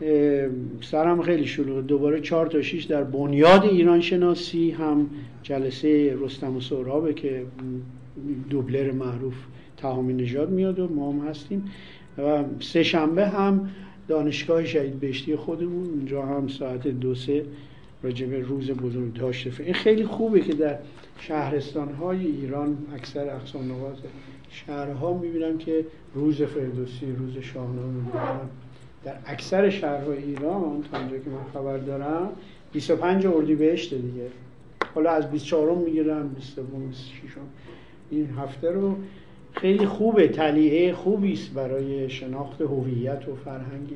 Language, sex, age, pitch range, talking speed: Persian, male, 50-69, 135-165 Hz, 130 wpm